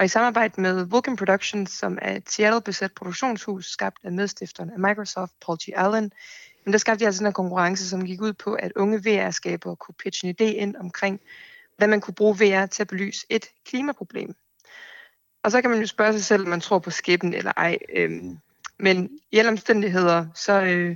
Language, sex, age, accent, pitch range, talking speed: Danish, female, 20-39, native, 180-215 Hz, 200 wpm